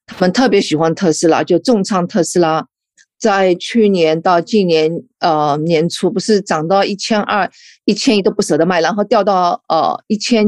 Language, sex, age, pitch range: Chinese, female, 50-69, 160-210 Hz